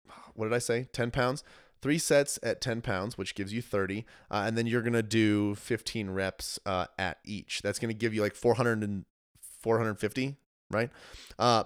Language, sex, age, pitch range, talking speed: English, male, 30-49, 100-120 Hz, 190 wpm